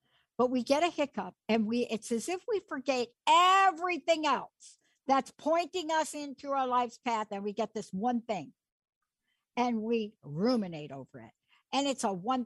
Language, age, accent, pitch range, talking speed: English, 60-79, American, 205-275 Hz, 175 wpm